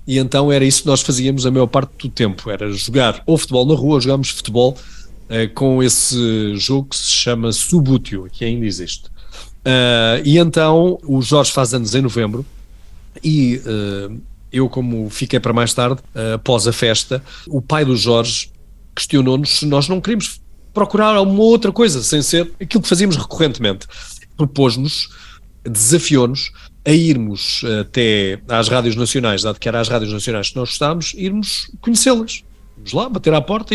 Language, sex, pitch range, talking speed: Portuguese, male, 115-150 Hz, 170 wpm